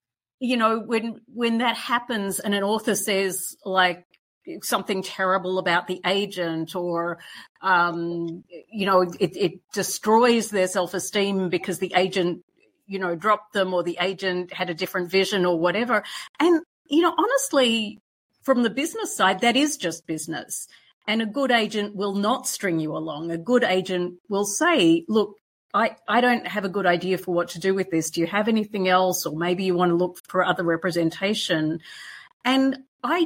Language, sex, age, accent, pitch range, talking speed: English, female, 40-59, Australian, 175-225 Hz, 175 wpm